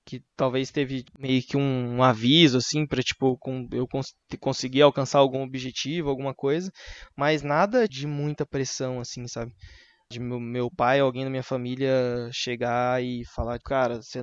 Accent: Brazilian